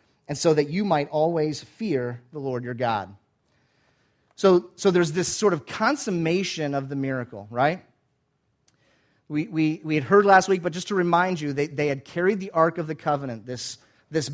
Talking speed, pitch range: 190 wpm, 140-185 Hz